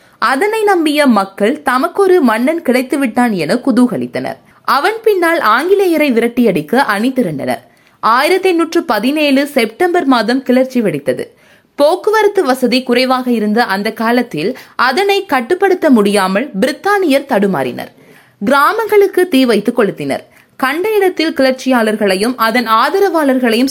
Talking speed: 100 wpm